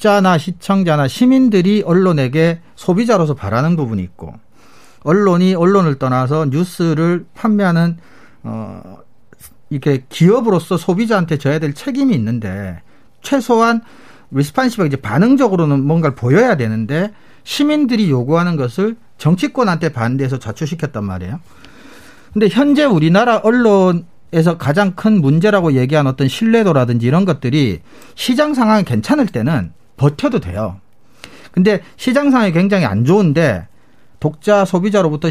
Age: 40-59